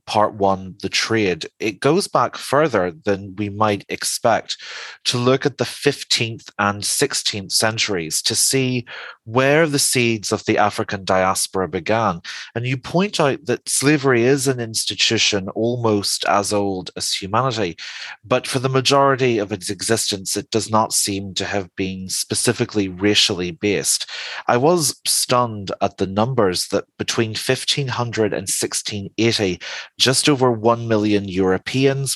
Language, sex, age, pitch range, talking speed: English, male, 30-49, 100-120 Hz, 145 wpm